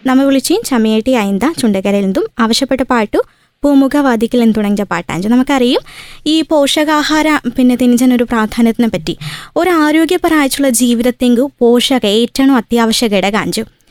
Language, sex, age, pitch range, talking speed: Malayalam, female, 20-39, 225-265 Hz, 120 wpm